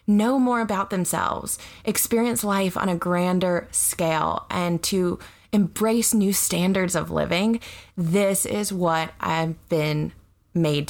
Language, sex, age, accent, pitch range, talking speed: English, female, 20-39, American, 160-200 Hz, 125 wpm